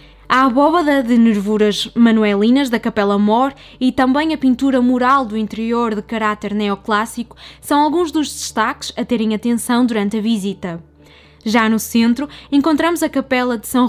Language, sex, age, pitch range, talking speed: Portuguese, female, 20-39, 210-260 Hz, 155 wpm